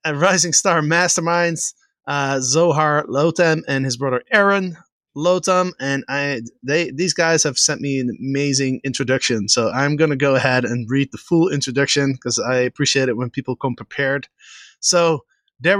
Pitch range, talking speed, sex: 140-175 Hz, 165 wpm, male